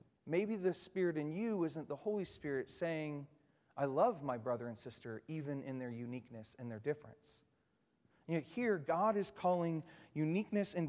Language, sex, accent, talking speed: English, male, American, 160 wpm